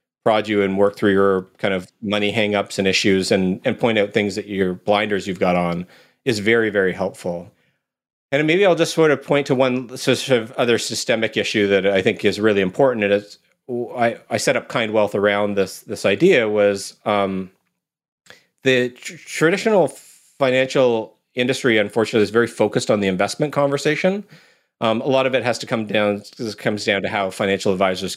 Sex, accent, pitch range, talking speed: male, American, 100-130 Hz, 190 wpm